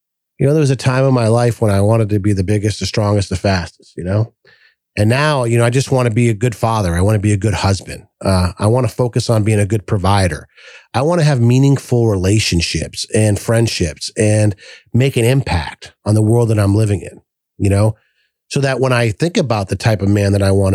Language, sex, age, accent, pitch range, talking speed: English, male, 40-59, American, 105-130 Hz, 245 wpm